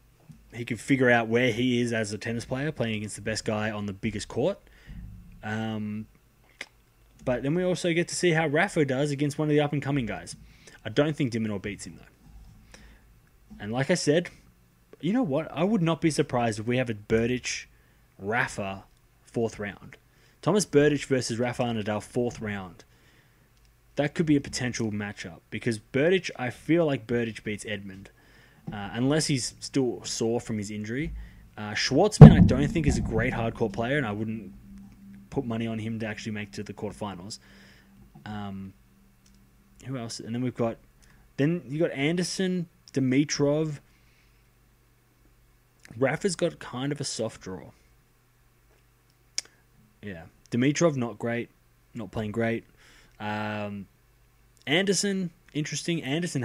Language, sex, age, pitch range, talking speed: English, male, 20-39, 105-145 Hz, 155 wpm